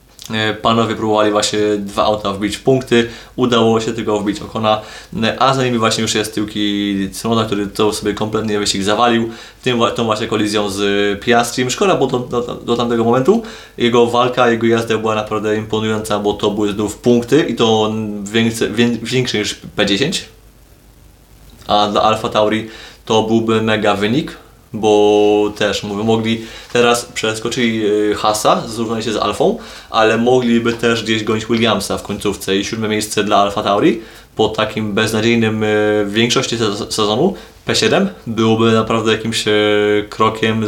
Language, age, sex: Polish, 20-39, male